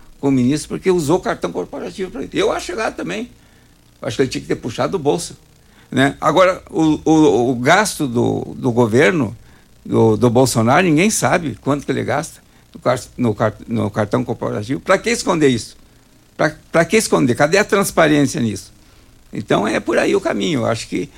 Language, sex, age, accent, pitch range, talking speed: Portuguese, male, 60-79, Brazilian, 120-170 Hz, 185 wpm